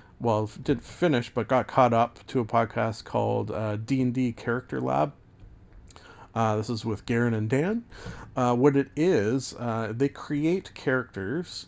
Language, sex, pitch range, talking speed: English, male, 110-125 Hz, 160 wpm